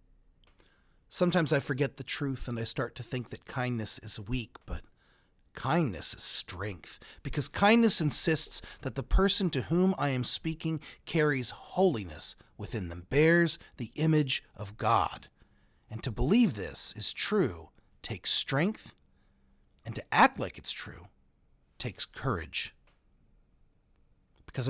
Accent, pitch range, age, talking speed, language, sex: American, 110-145 Hz, 40-59, 135 wpm, English, male